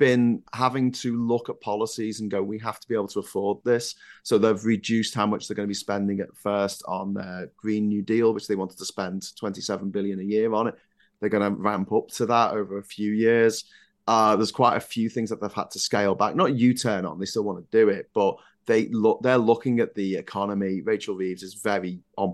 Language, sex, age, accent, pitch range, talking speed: English, male, 30-49, British, 100-125 Hz, 240 wpm